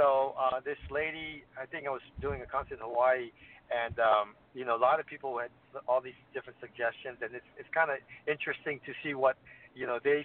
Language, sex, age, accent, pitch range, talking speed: English, male, 50-69, American, 120-145 Hz, 220 wpm